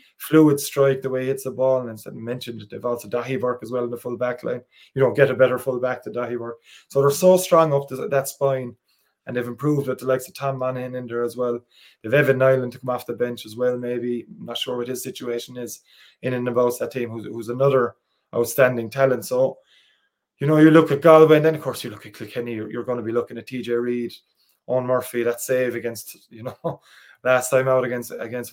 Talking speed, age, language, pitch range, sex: 240 wpm, 20-39, English, 120-135 Hz, male